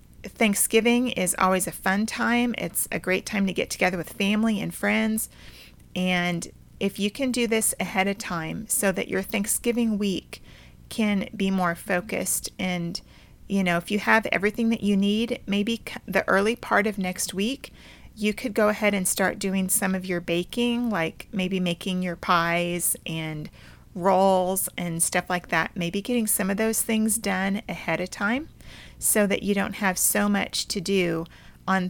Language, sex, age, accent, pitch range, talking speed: English, female, 40-59, American, 180-220 Hz, 175 wpm